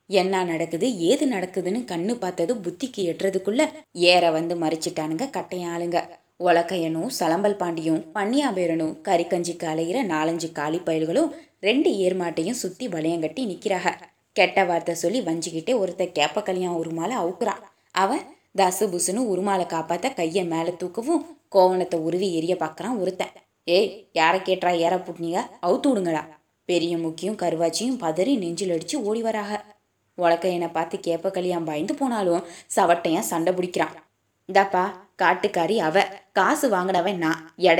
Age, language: 20-39, Tamil